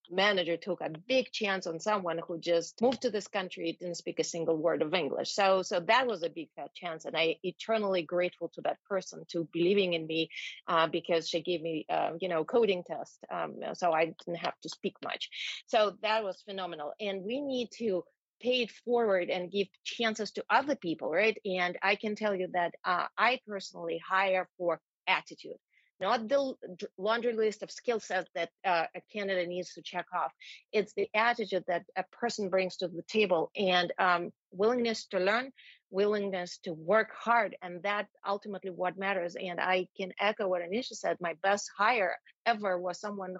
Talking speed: 190 wpm